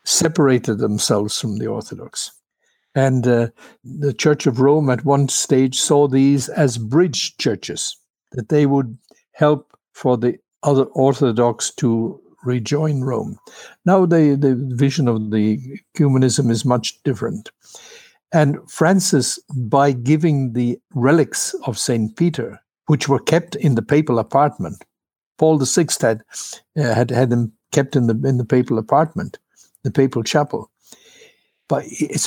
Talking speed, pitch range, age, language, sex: 140 wpm, 120-150 Hz, 60-79, English, male